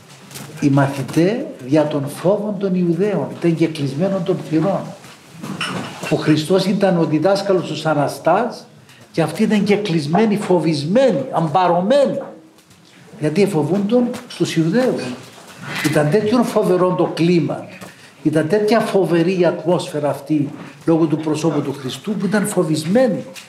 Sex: male